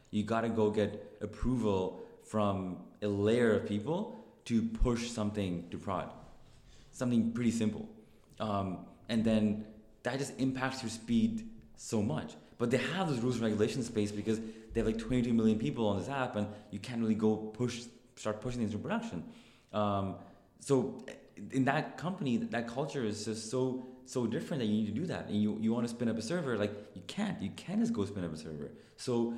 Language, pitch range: English, 95-120 Hz